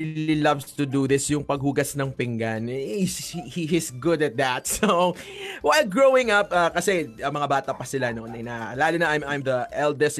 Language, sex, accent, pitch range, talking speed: English, male, Filipino, 135-185 Hz, 185 wpm